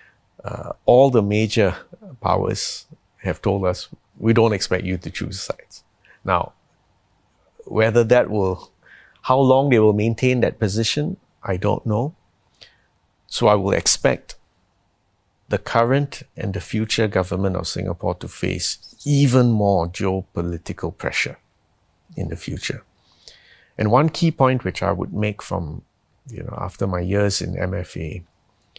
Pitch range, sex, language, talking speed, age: 95-115 Hz, male, English, 140 wpm, 50-69